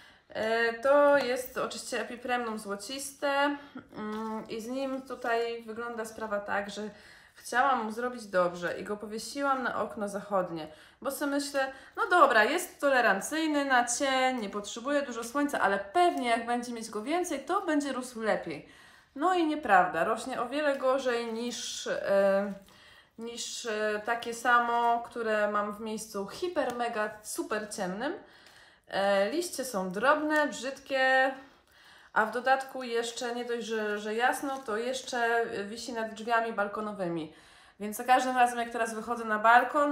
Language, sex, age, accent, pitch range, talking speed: Polish, female, 20-39, native, 215-270 Hz, 140 wpm